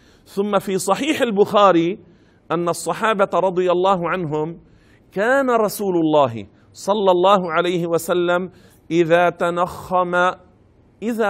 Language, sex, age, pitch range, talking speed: Arabic, male, 50-69, 150-190 Hz, 100 wpm